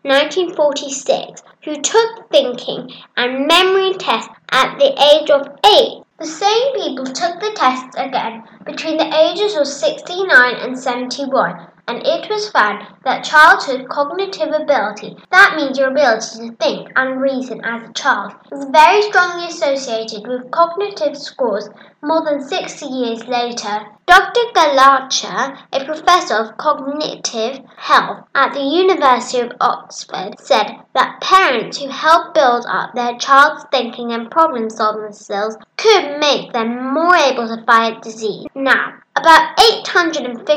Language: English